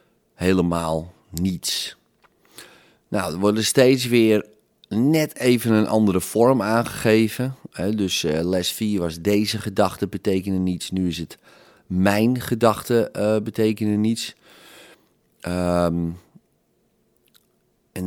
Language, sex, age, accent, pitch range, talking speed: Dutch, male, 30-49, Dutch, 90-110 Hz, 100 wpm